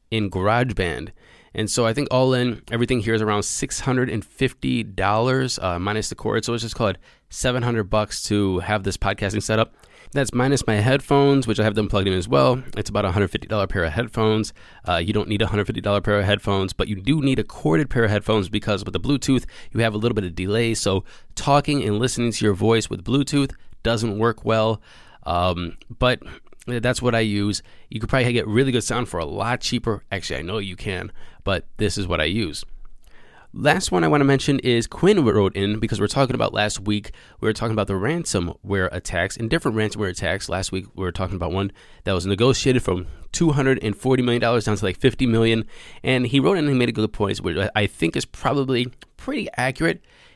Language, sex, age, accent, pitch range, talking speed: English, male, 20-39, American, 100-125 Hz, 210 wpm